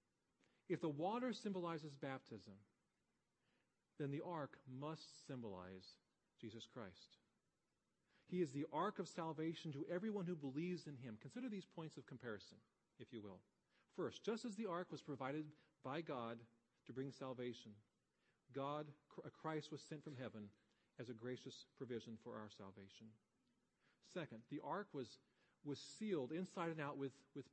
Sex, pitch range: male, 125-175 Hz